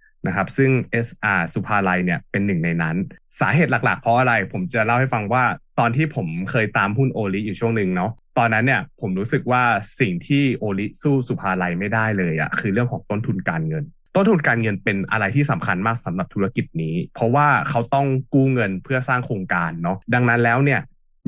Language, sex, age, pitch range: Thai, male, 20-39, 100-140 Hz